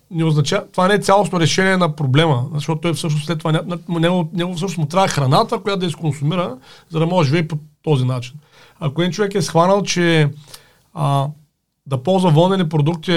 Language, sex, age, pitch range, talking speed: Bulgarian, male, 40-59, 140-180 Hz, 195 wpm